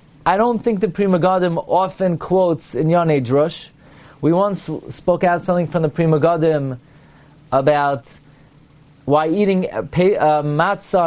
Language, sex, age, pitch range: English, male, 30-49, 150-215 Hz